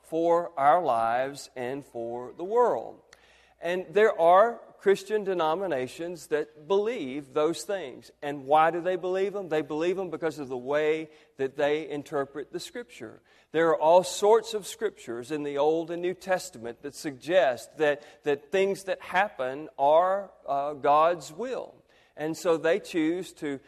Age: 40-59